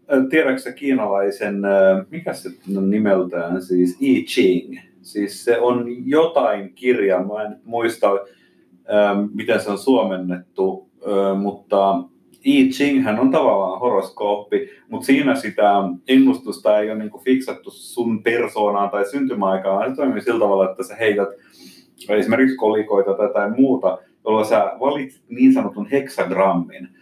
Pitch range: 95-130 Hz